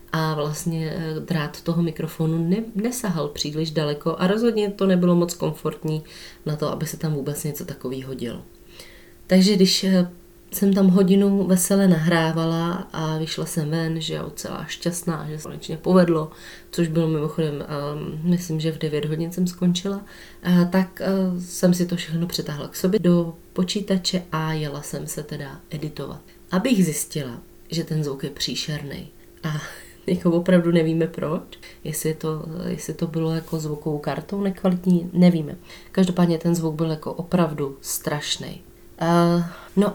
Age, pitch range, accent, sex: 20-39, 155-180 Hz, native, female